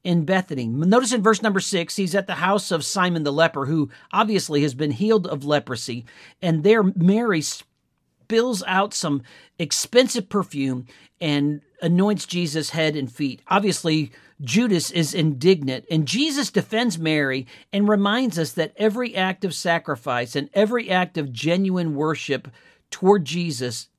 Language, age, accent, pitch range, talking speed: English, 50-69, American, 150-195 Hz, 150 wpm